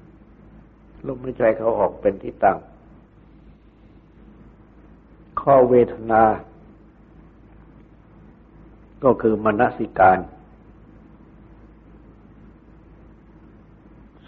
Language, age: Thai, 60-79